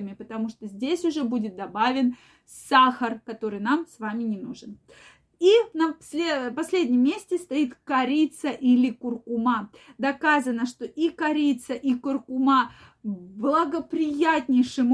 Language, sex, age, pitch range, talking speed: Russian, female, 20-39, 230-275 Hz, 115 wpm